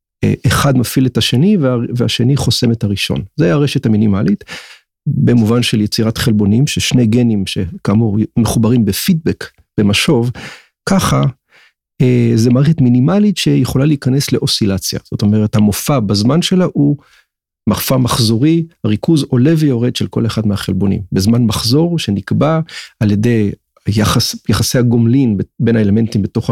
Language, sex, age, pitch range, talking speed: Hebrew, male, 40-59, 110-140 Hz, 125 wpm